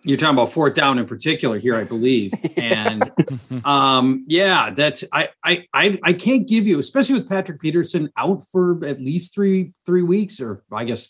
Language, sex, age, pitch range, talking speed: English, male, 30-49, 130-175 Hz, 185 wpm